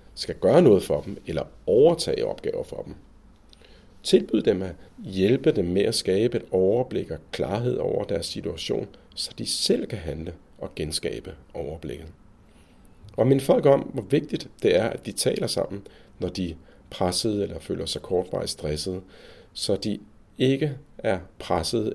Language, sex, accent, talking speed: Danish, male, native, 160 wpm